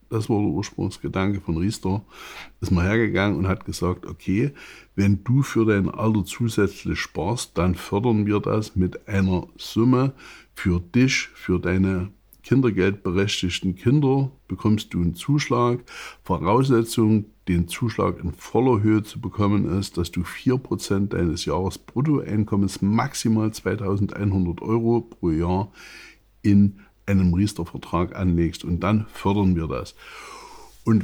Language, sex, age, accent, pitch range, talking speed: German, male, 60-79, German, 95-115 Hz, 130 wpm